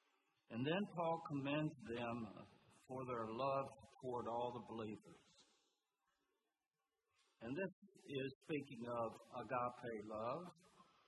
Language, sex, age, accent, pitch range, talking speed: English, male, 60-79, American, 120-145 Hz, 105 wpm